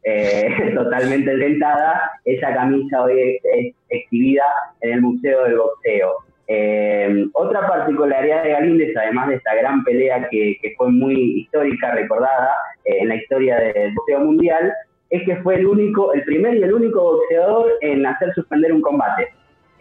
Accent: Argentinian